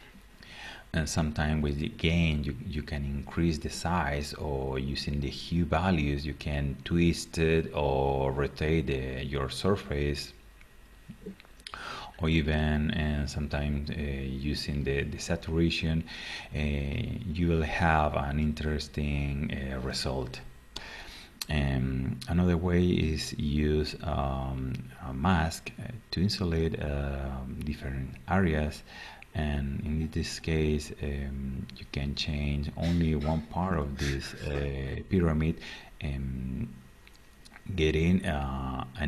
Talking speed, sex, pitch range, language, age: 110 wpm, male, 70-80 Hz, English, 30-49